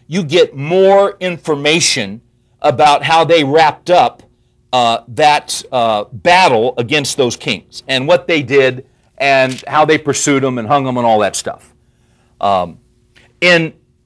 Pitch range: 130-180 Hz